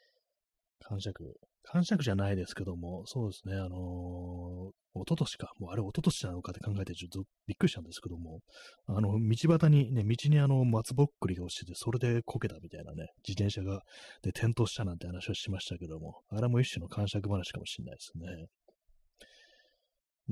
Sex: male